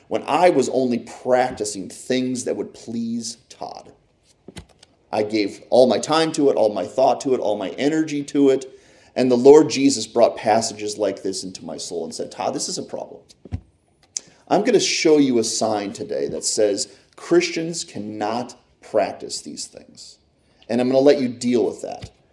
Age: 30-49